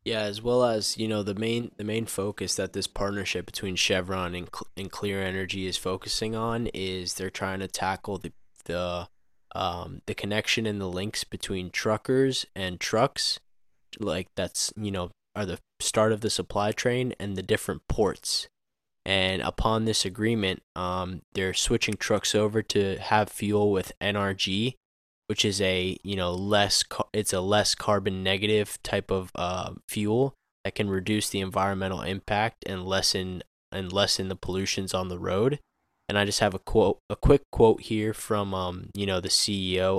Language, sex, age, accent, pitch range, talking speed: English, male, 20-39, American, 95-110 Hz, 175 wpm